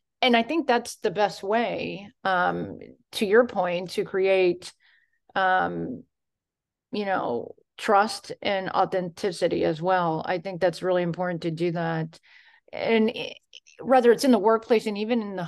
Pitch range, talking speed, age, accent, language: 175-220 Hz, 155 wpm, 30-49, American, English